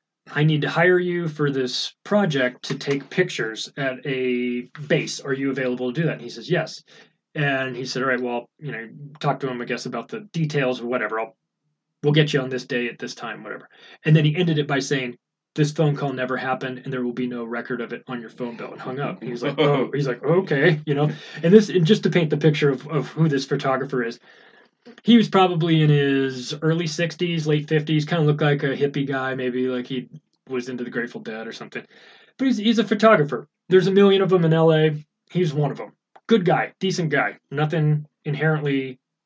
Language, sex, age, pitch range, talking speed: English, male, 20-39, 130-180 Hz, 230 wpm